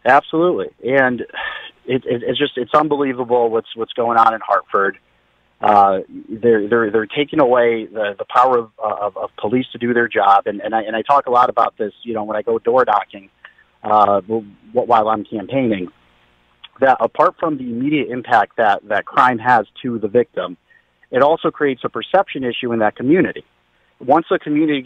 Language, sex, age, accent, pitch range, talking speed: English, male, 40-59, American, 110-140 Hz, 185 wpm